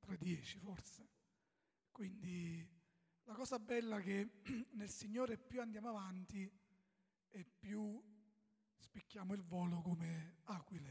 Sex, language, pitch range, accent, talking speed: male, Italian, 175-215 Hz, native, 115 wpm